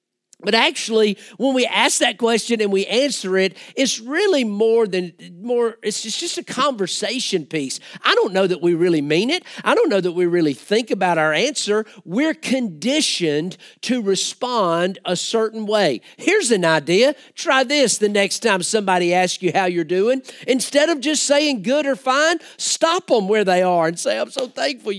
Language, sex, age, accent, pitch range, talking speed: English, male, 50-69, American, 195-300 Hz, 185 wpm